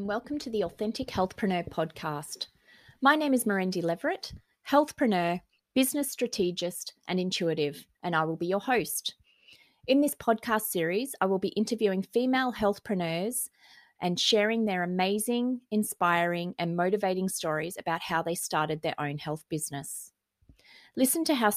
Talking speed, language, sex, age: 140 wpm, English, female, 30-49